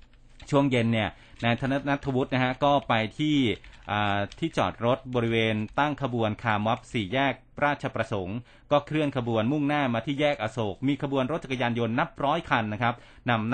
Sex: male